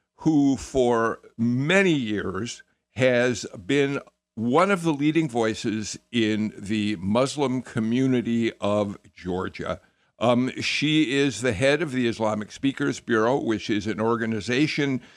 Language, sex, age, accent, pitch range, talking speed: English, male, 60-79, American, 110-140 Hz, 125 wpm